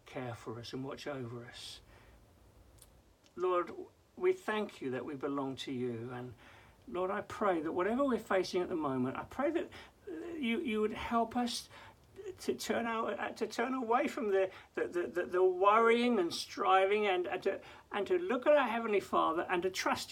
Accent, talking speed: British, 185 wpm